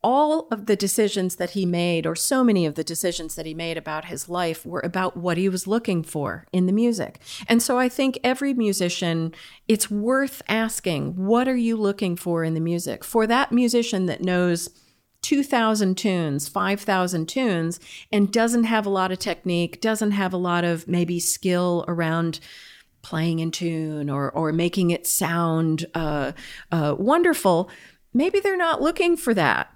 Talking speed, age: 175 wpm, 40-59